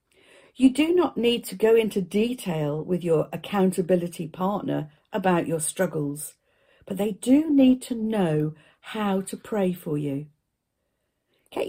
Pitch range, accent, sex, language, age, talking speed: 155-230 Hz, British, female, English, 50-69, 140 wpm